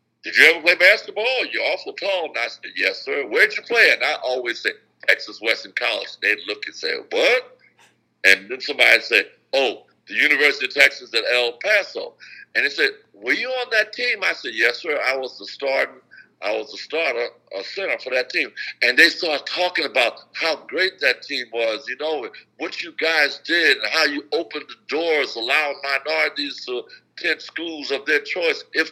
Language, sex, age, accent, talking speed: English, male, 60-79, American, 200 wpm